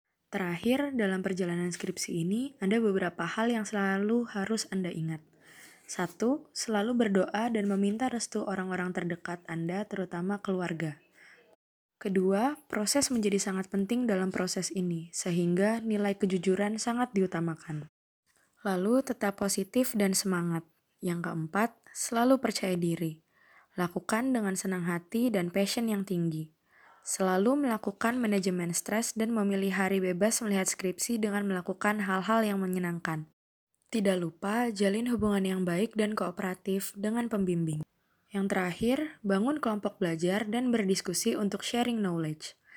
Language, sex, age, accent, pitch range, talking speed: Indonesian, female, 20-39, native, 180-220 Hz, 125 wpm